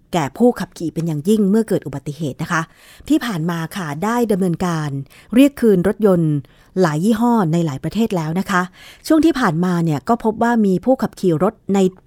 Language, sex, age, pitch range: Thai, female, 30-49, 165-220 Hz